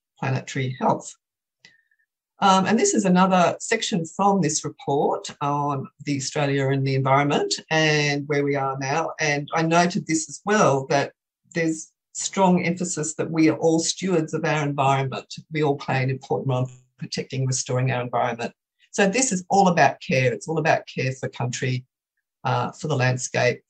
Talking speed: 165 wpm